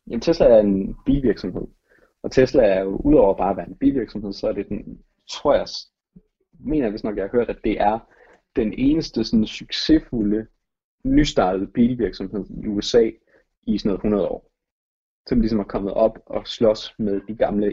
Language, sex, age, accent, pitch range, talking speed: Danish, male, 30-49, native, 100-125 Hz, 180 wpm